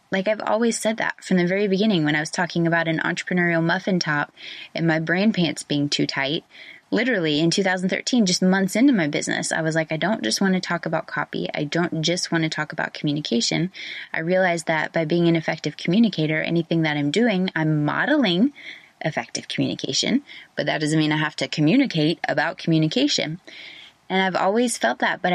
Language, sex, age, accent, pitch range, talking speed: English, female, 20-39, American, 160-200 Hz, 200 wpm